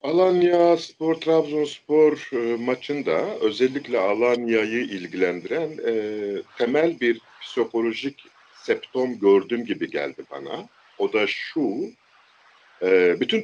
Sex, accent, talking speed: male, native, 95 wpm